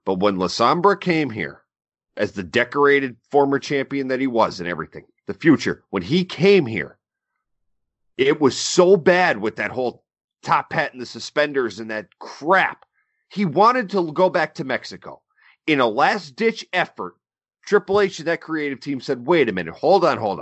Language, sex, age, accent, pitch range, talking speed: English, male, 40-59, American, 130-210 Hz, 175 wpm